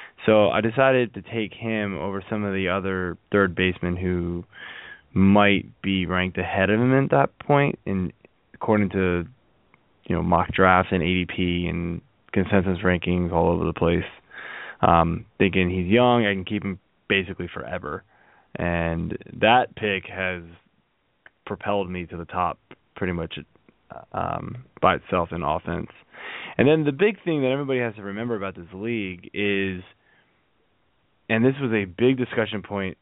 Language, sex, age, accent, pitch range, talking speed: English, male, 20-39, American, 90-115 Hz, 155 wpm